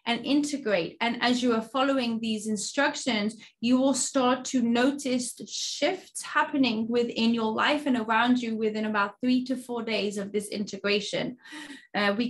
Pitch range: 215-250 Hz